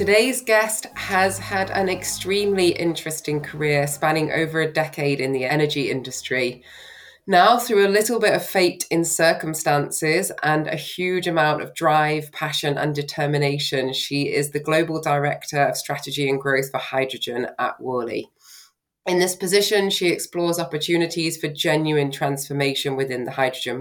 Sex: female